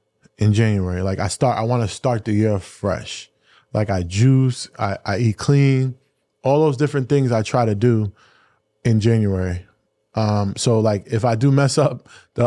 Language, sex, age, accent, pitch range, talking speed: English, male, 20-39, American, 110-140 Hz, 185 wpm